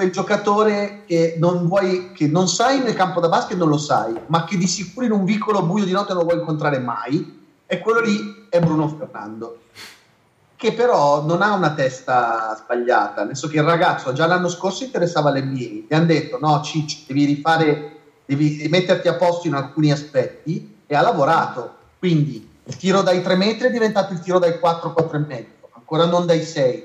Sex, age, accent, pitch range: male, 30-49, native, 150-190 Hz